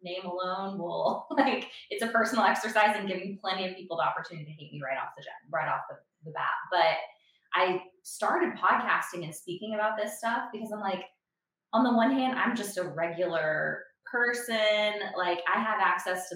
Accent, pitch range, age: American, 160-195 Hz, 20-39